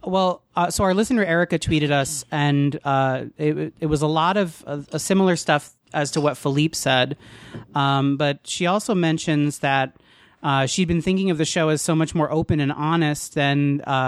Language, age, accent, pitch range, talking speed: English, 30-49, American, 135-160 Hz, 200 wpm